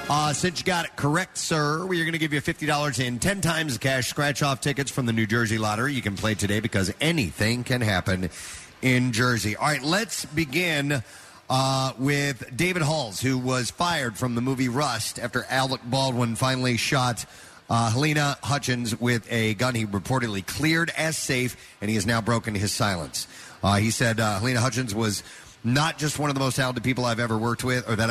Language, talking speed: English, 200 wpm